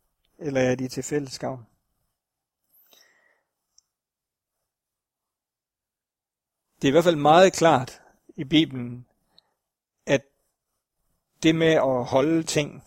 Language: Danish